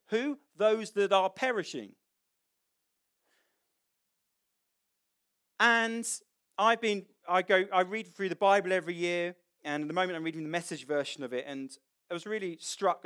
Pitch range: 155-215 Hz